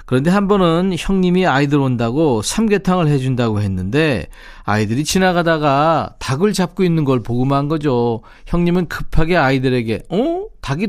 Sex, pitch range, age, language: male, 125-175 Hz, 40-59, Korean